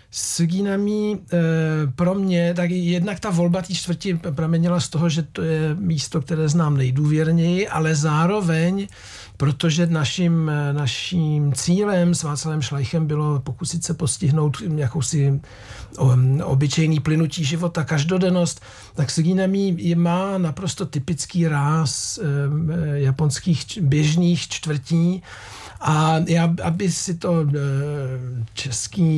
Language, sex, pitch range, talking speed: Czech, male, 140-170 Hz, 105 wpm